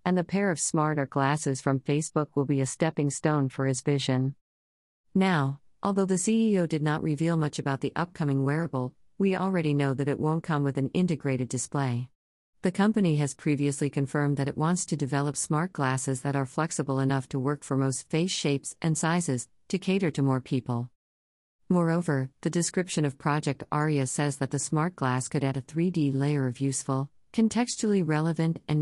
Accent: American